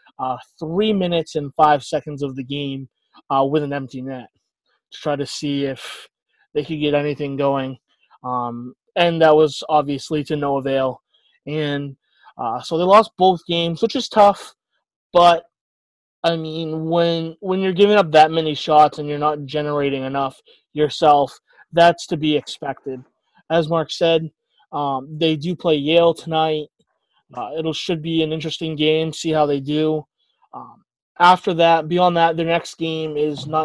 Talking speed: 165 wpm